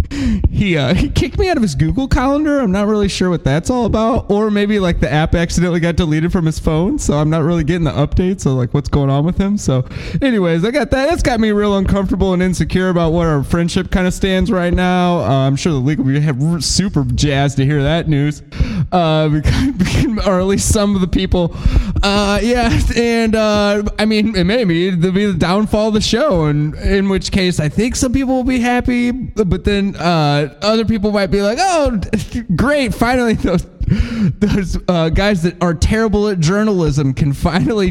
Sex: male